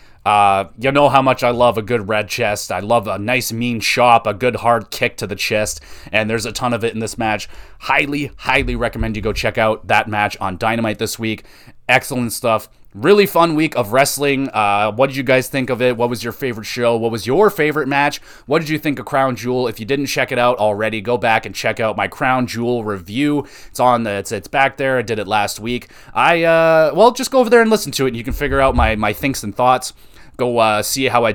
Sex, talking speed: male, 250 wpm